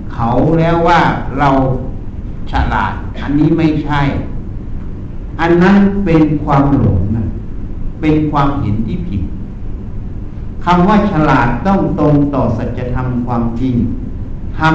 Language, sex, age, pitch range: Thai, male, 60-79, 100-155 Hz